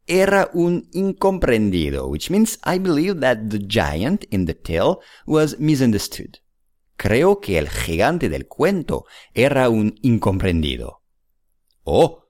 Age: 50-69